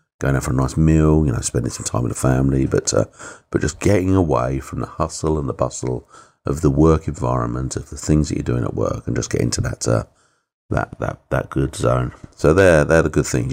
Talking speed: 245 wpm